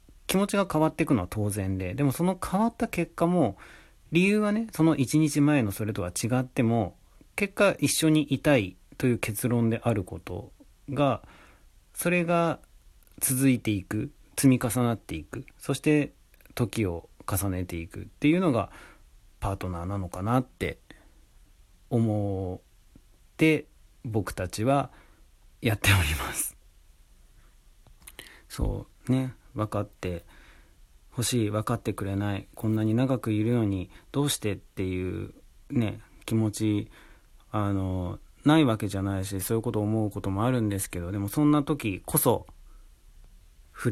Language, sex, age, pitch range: Japanese, male, 40-59, 90-125 Hz